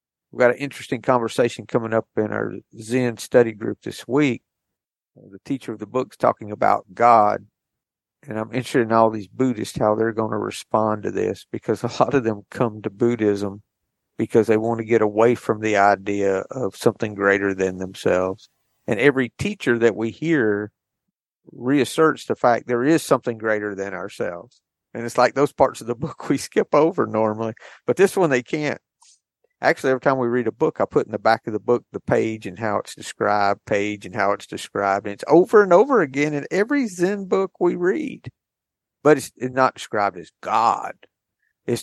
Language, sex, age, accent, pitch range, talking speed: English, male, 50-69, American, 105-125 Hz, 195 wpm